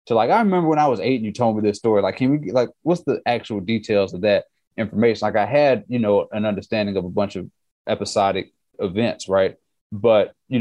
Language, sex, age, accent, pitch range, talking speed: English, male, 30-49, American, 100-125 Hz, 230 wpm